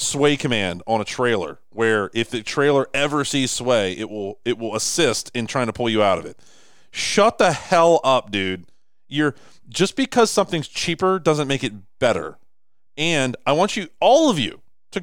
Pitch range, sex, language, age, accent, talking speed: 115-185 Hz, male, English, 30-49, American, 190 wpm